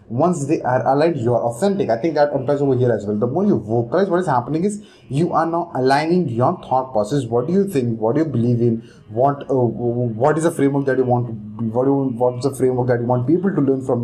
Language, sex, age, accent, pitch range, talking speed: English, male, 20-39, Indian, 120-150 Hz, 270 wpm